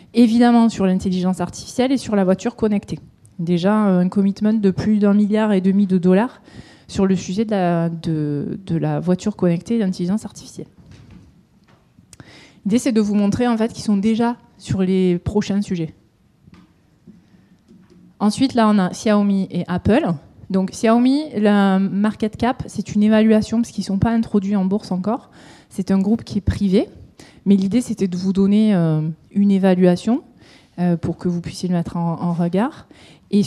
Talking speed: 175 wpm